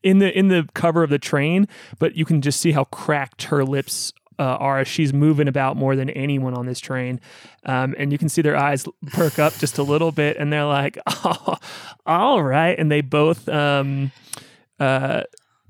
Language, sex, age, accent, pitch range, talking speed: English, male, 30-49, American, 135-150 Hz, 205 wpm